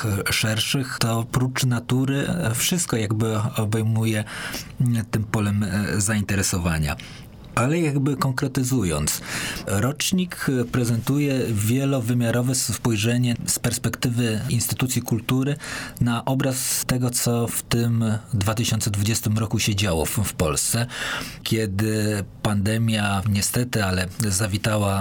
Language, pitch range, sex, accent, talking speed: Polish, 110-130 Hz, male, native, 90 wpm